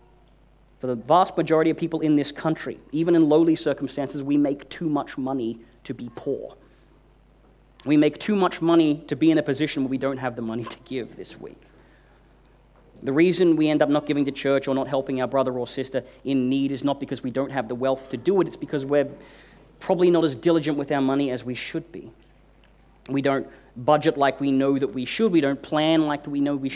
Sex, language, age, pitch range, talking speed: male, English, 30-49, 125-155 Hz, 225 wpm